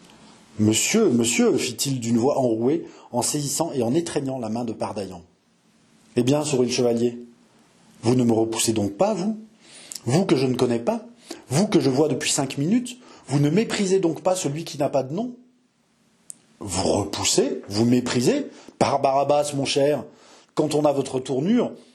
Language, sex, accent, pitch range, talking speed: French, male, French, 125-185 Hz, 170 wpm